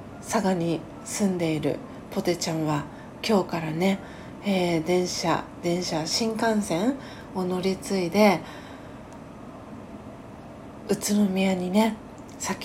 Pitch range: 170-205 Hz